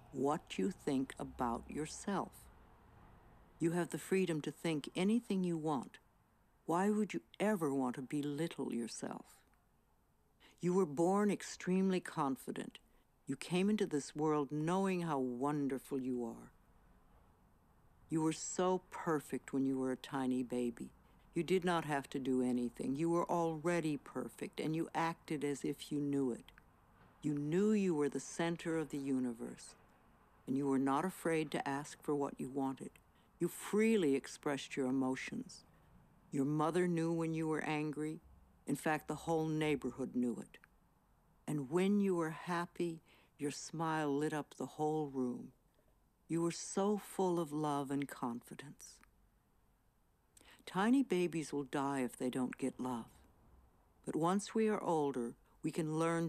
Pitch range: 135-170 Hz